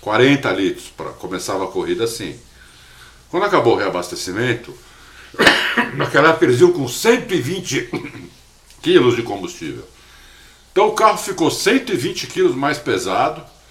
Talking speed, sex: 120 wpm, male